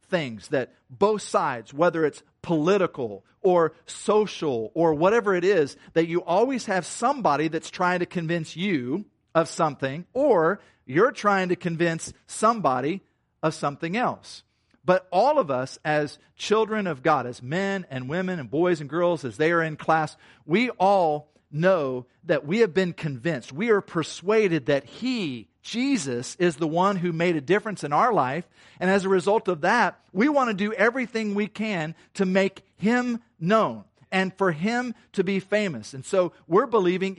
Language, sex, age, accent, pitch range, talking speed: English, male, 50-69, American, 150-200 Hz, 170 wpm